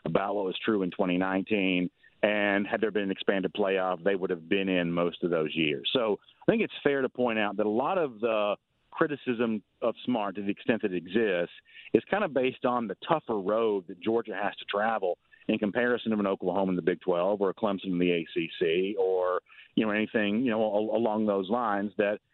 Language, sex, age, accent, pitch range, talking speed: English, male, 40-59, American, 100-125 Hz, 220 wpm